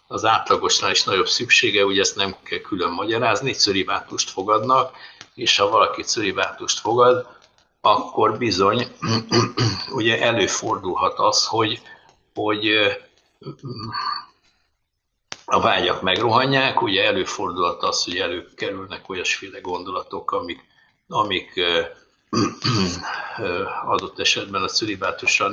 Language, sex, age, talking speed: Hungarian, male, 60-79, 95 wpm